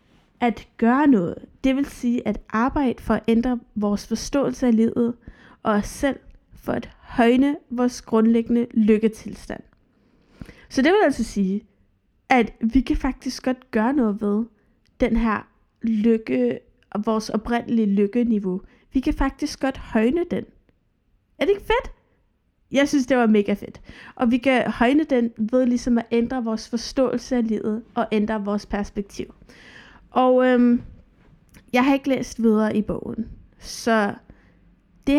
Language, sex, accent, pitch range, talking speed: Danish, female, native, 220-255 Hz, 150 wpm